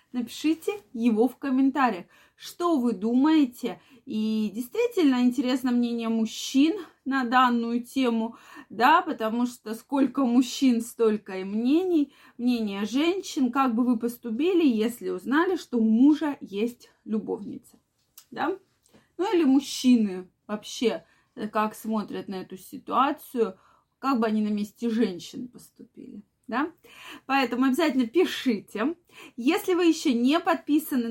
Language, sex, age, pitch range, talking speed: Russian, female, 20-39, 230-310 Hz, 120 wpm